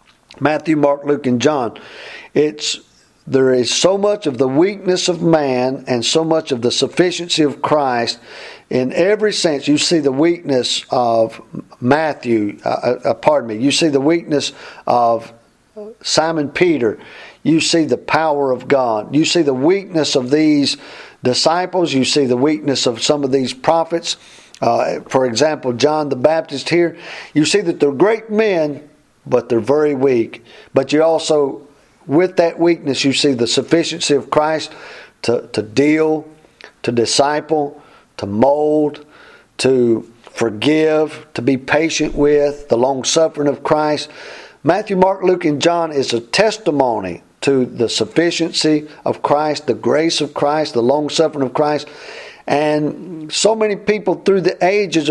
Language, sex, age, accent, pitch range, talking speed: English, male, 50-69, American, 135-165 Hz, 150 wpm